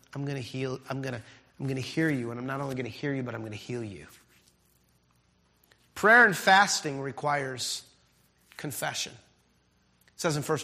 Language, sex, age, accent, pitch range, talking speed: English, male, 30-49, American, 105-160 Hz, 195 wpm